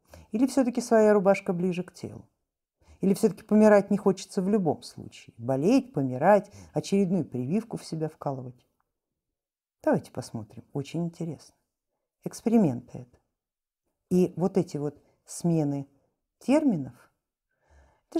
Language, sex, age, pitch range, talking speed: Russian, female, 50-69, 155-230 Hz, 115 wpm